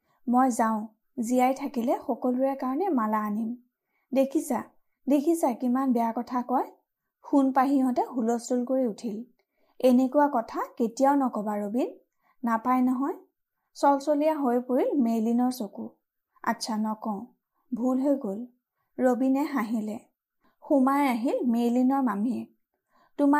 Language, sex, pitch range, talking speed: Hindi, female, 230-275 Hz, 100 wpm